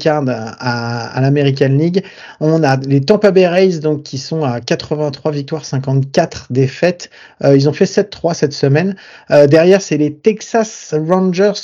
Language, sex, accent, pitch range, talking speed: French, male, French, 140-185 Hz, 160 wpm